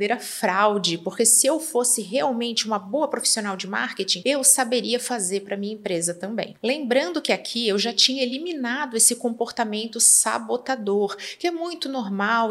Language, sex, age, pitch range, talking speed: Portuguese, female, 30-49, 200-255 Hz, 165 wpm